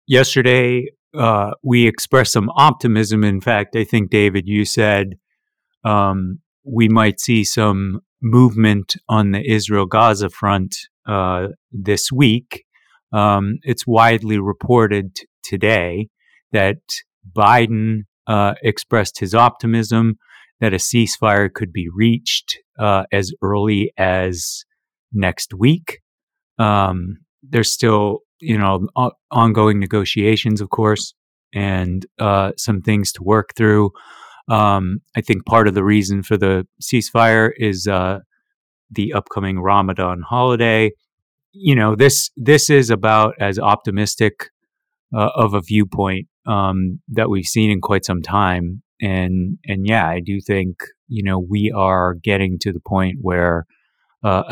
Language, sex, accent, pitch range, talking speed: English, male, American, 95-115 Hz, 130 wpm